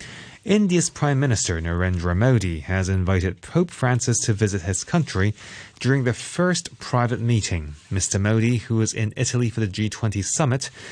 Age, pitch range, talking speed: 30-49, 95-130 Hz, 155 wpm